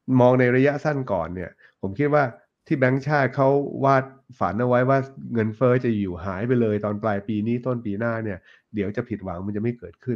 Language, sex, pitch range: Thai, male, 100-125 Hz